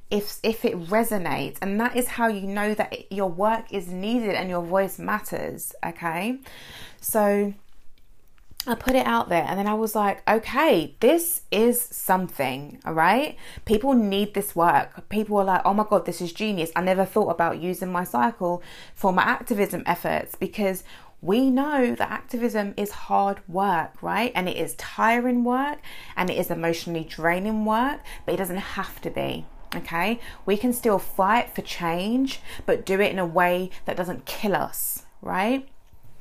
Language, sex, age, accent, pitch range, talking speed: English, female, 20-39, British, 175-215 Hz, 175 wpm